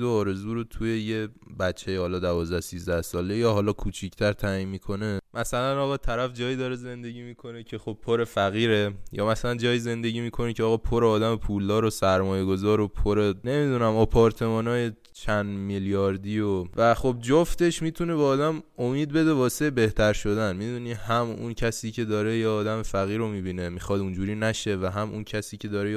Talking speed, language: 175 wpm, Persian